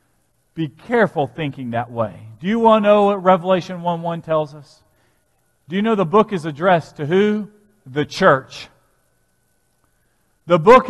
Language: English